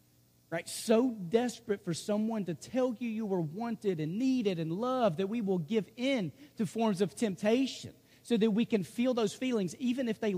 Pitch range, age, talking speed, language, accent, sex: 140-205 Hz, 40-59, 195 wpm, English, American, male